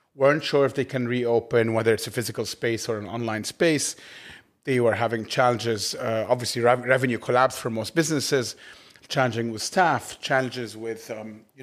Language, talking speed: English, 175 wpm